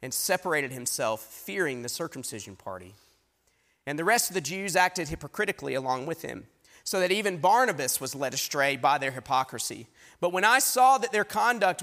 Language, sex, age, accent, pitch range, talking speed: English, male, 40-59, American, 130-190 Hz, 180 wpm